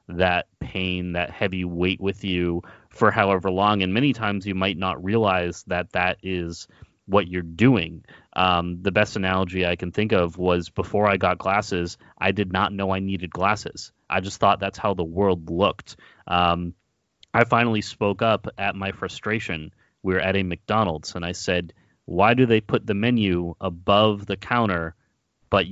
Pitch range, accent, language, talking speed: 90-105 Hz, American, English, 180 wpm